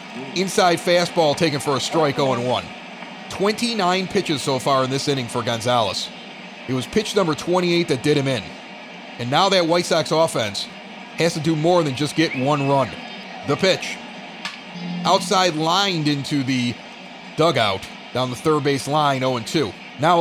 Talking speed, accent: 160 wpm, American